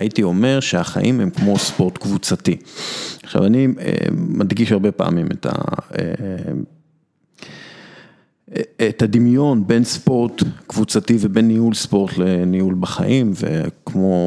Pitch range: 90-115 Hz